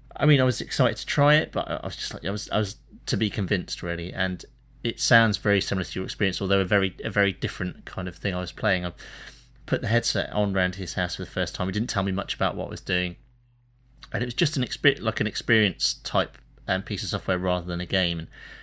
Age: 30-49